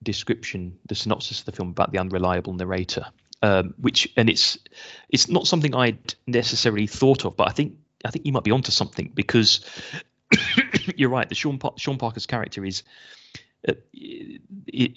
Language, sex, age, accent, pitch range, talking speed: English, male, 30-49, British, 100-125 Hz, 170 wpm